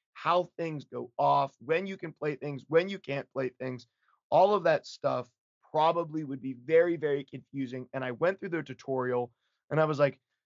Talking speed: 195 wpm